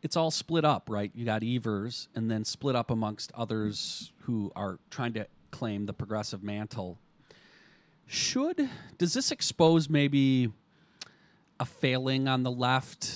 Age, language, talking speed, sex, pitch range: 40-59, English, 145 wpm, male, 105-130 Hz